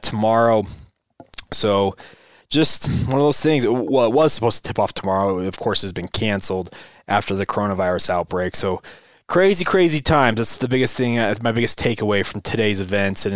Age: 20-39